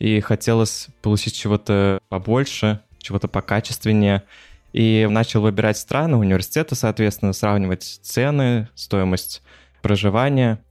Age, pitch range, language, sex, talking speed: 20-39, 100-115 Hz, Russian, male, 95 wpm